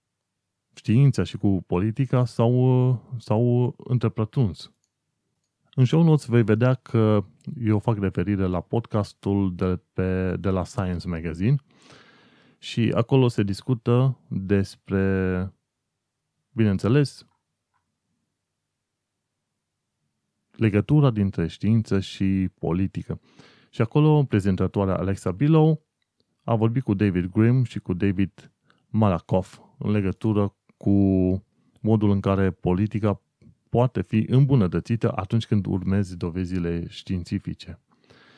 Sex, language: male, Romanian